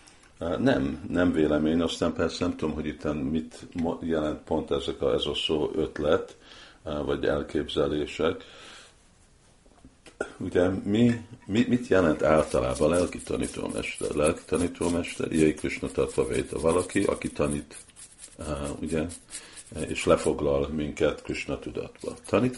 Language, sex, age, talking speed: Hungarian, male, 50-69, 110 wpm